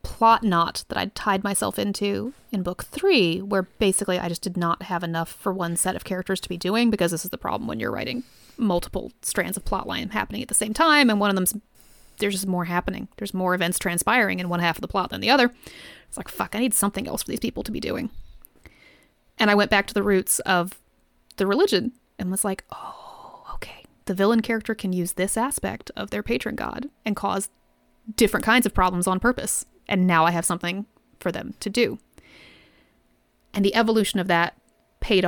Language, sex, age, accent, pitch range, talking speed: English, female, 30-49, American, 175-215 Hz, 215 wpm